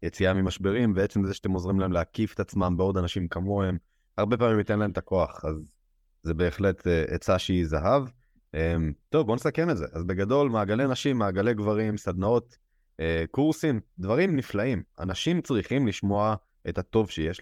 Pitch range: 95-125 Hz